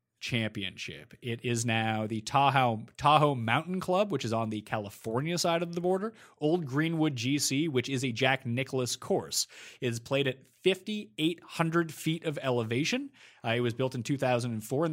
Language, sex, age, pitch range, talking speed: English, male, 30-49, 120-165 Hz, 165 wpm